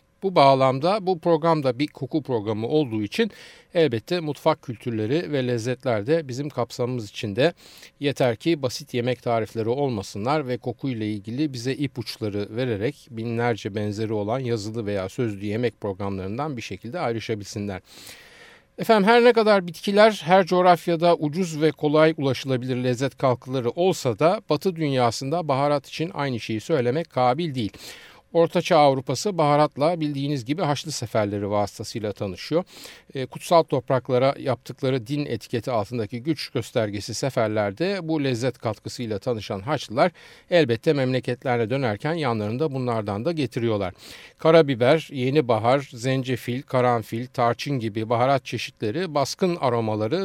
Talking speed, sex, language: 125 wpm, male, Turkish